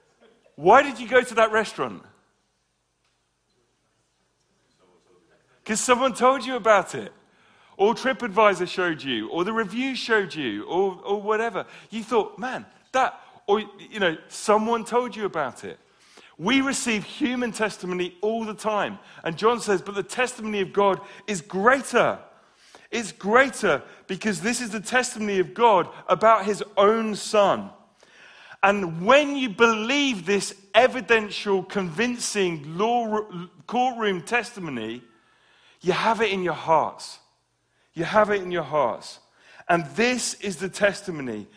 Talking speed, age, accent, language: 135 wpm, 40-59, British, English